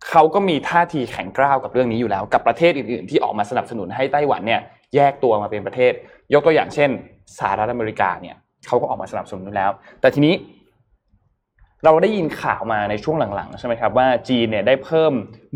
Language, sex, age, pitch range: Thai, male, 20-39, 115-155 Hz